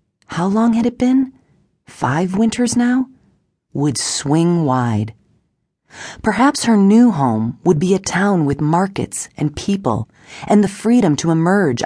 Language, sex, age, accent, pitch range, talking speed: English, female, 40-59, American, 125-185 Hz, 140 wpm